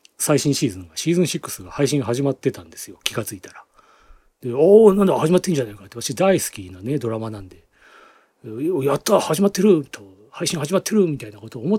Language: Japanese